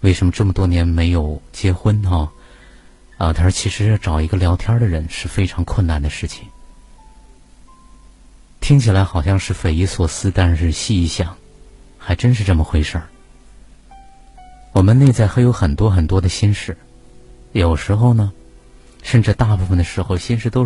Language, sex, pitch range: Chinese, male, 85-105 Hz